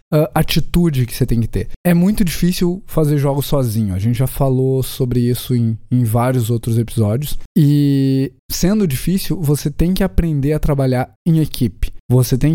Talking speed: 175 wpm